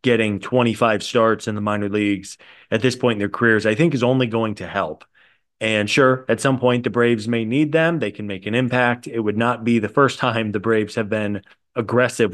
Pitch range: 105-125 Hz